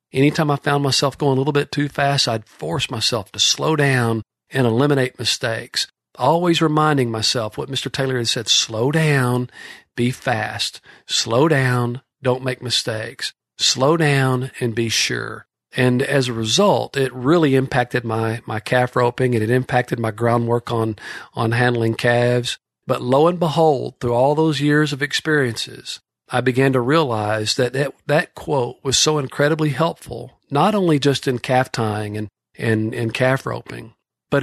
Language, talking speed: English, 165 wpm